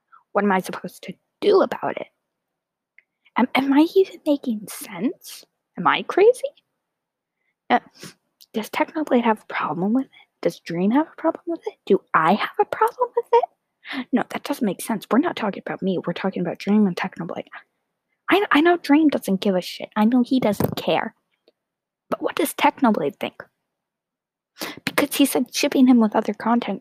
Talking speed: 180 wpm